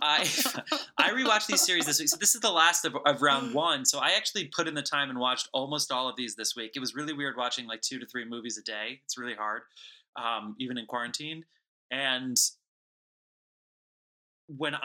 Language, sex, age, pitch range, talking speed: English, male, 20-39, 115-160 Hz, 210 wpm